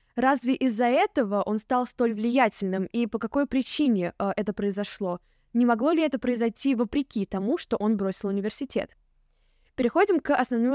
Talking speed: 155 wpm